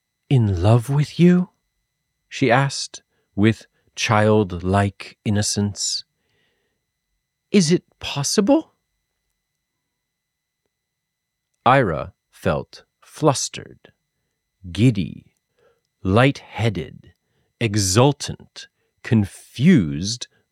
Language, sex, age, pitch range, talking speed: English, male, 40-59, 100-145 Hz, 55 wpm